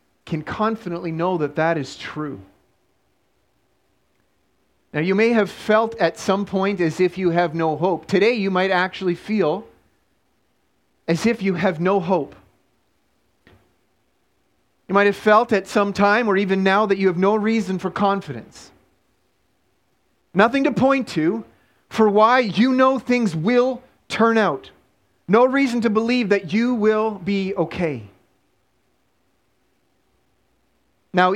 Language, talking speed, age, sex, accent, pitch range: English, 140 wpm, 30-49, male, American, 140-205 Hz